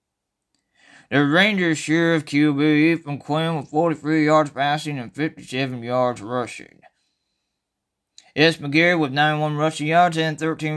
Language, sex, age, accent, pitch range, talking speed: English, male, 20-39, American, 130-160 Hz, 130 wpm